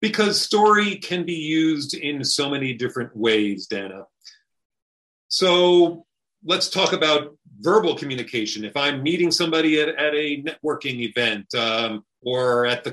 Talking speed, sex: 140 wpm, male